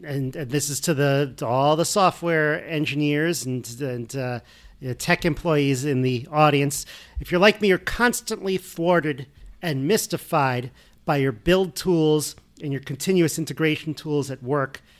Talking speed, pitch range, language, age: 165 wpm, 145-180 Hz, English, 40-59